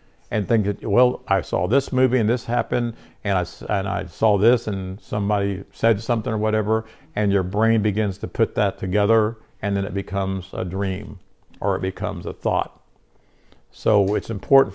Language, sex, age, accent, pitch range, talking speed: English, male, 50-69, American, 100-115 Hz, 185 wpm